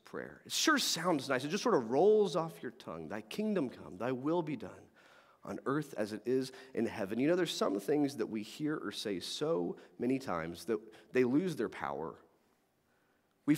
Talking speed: 205 wpm